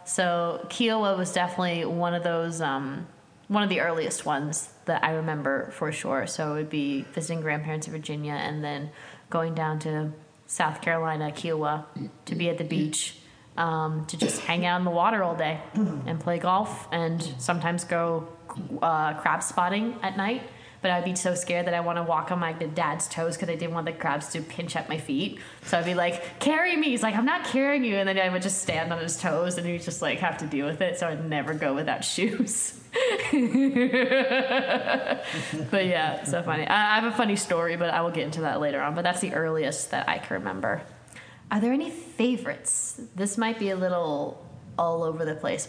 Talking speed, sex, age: 210 wpm, female, 20-39